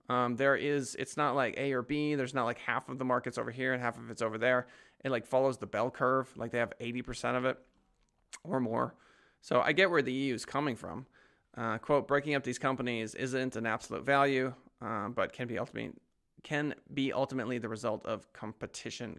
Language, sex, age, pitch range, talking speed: English, male, 20-39, 115-135 Hz, 220 wpm